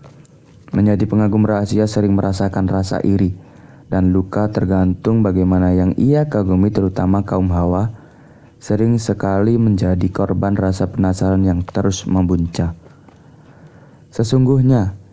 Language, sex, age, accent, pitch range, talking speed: Indonesian, male, 20-39, native, 95-120 Hz, 105 wpm